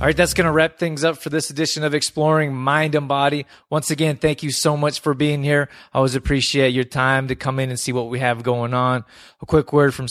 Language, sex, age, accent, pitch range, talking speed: English, male, 20-39, American, 115-130 Hz, 260 wpm